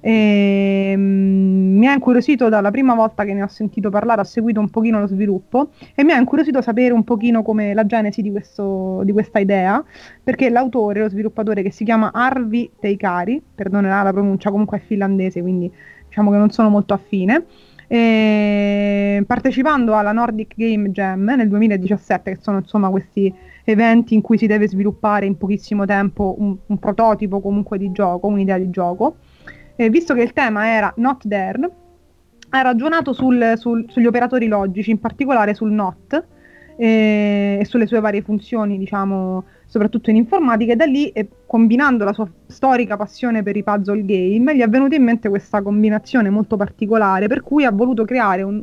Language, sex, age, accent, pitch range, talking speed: Italian, female, 20-39, native, 200-235 Hz, 175 wpm